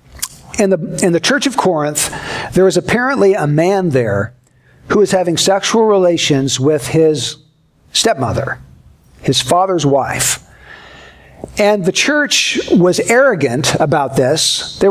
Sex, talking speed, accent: male, 125 wpm, American